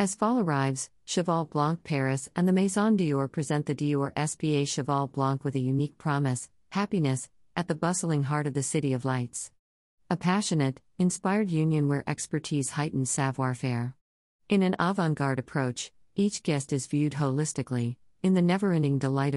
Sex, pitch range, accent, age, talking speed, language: female, 135-165 Hz, American, 50-69, 160 wpm, English